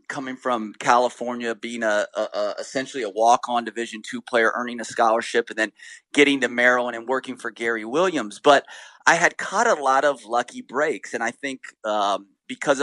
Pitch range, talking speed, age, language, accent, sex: 115-140 Hz, 185 wpm, 30-49, English, American, male